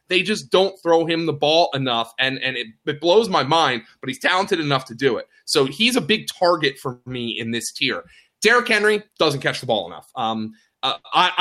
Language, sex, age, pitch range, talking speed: English, male, 20-39, 135-185 Hz, 215 wpm